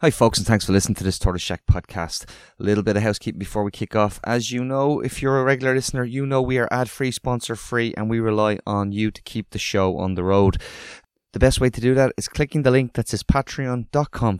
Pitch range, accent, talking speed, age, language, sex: 95-120 Hz, Irish, 255 wpm, 20-39, English, male